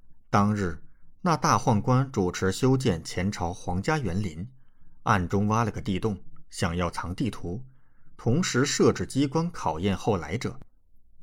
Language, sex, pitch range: Chinese, male, 90-120 Hz